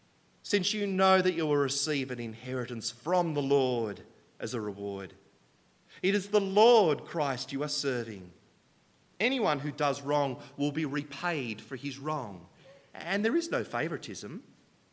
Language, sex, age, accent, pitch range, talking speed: English, male, 30-49, Australian, 130-185 Hz, 155 wpm